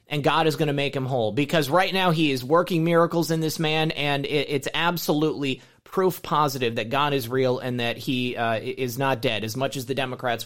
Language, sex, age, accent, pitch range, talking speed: English, male, 30-49, American, 120-155 Hz, 225 wpm